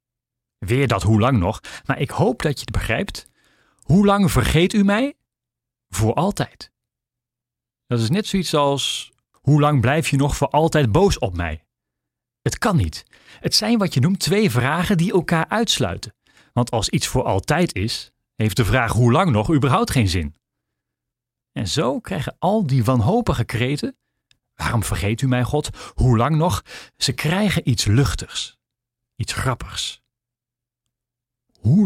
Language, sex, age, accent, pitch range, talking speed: Dutch, male, 40-59, Dutch, 120-160 Hz, 160 wpm